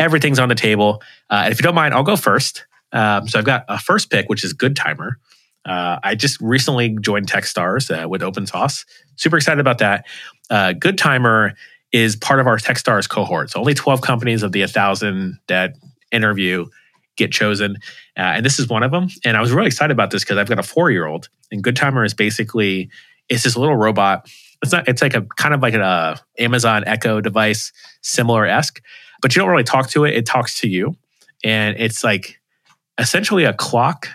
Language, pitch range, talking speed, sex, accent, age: English, 100-125 Hz, 200 wpm, male, American, 30-49